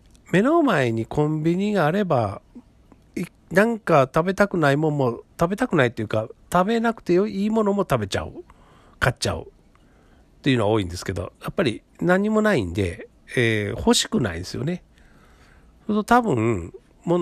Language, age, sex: Japanese, 50-69, male